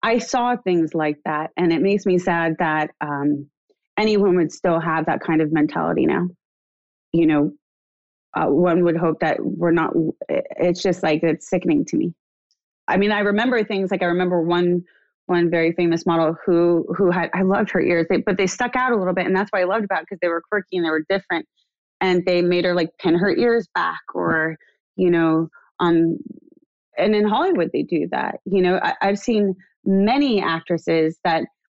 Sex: female